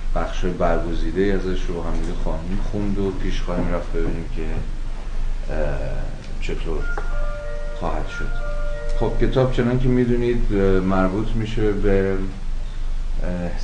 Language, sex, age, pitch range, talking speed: Persian, male, 30-49, 85-100 Hz, 105 wpm